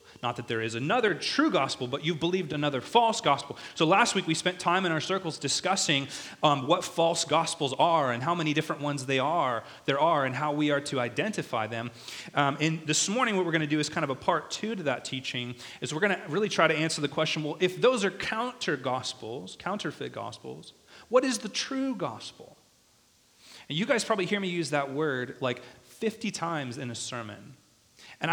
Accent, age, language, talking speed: American, 30-49, English, 210 wpm